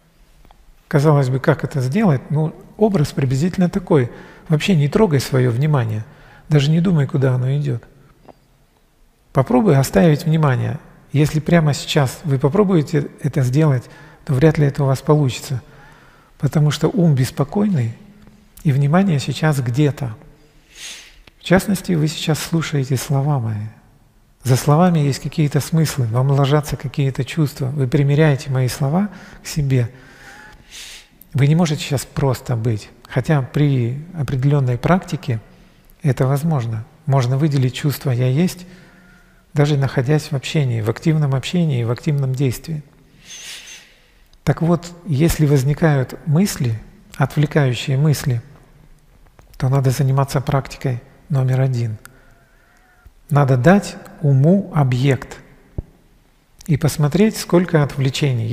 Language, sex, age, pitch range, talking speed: Russian, male, 40-59, 135-160 Hz, 120 wpm